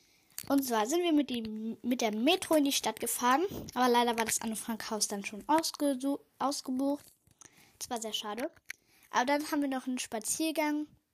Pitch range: 225-290 Hz